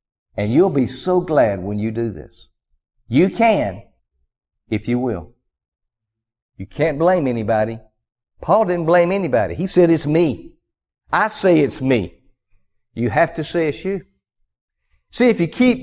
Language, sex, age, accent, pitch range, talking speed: English, male, 60-79, American, 120-180 Hz, 150 wpm